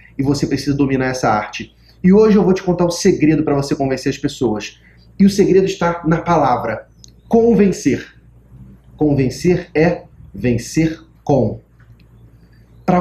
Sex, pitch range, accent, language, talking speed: male, 135-185 Hz, Brazilian, Portuguese, 150 wpm